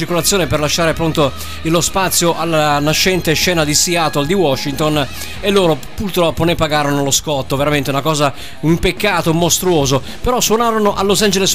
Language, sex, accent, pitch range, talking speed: Italian, male, native, 150-185 Hz, 160 wpm